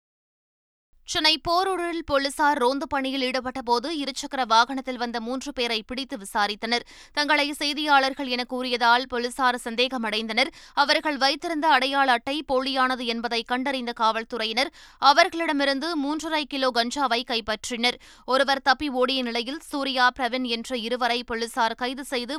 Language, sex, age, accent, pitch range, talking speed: Tamil, female, 20-39, native, 240-285 Hz, 115 wpm